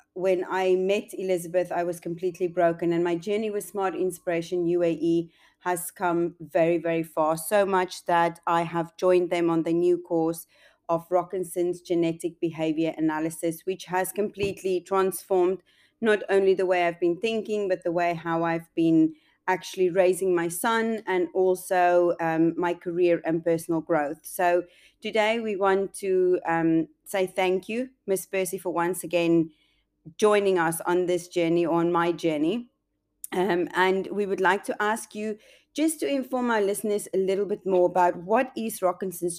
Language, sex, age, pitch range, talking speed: English, female, 30-49, 170-195 Hz, 165 wpm